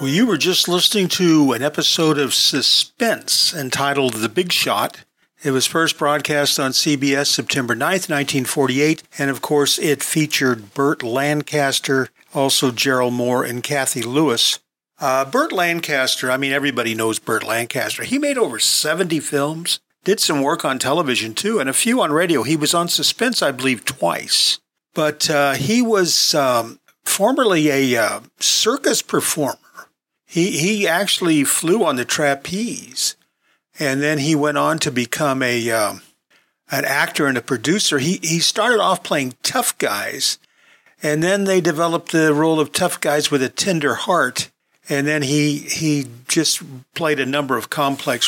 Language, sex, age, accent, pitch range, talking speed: English, male, 50-69, American, 135-165 Hz, 160 wpm